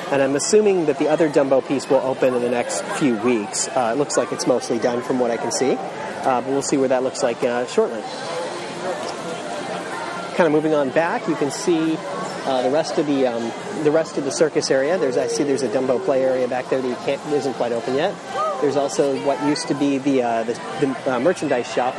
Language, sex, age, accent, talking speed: English, male, 30-49, American, 235 wpm